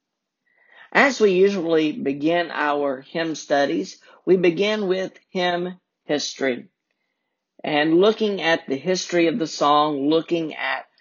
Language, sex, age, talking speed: English, male, 50-69, 120 wpm